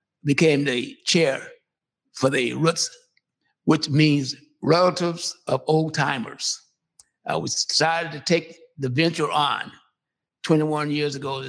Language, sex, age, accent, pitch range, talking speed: English, male, 60-79, American, 145-180 Hz, 125 wpm